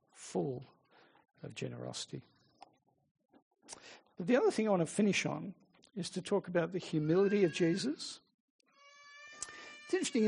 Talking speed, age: 130 wpm, 60-79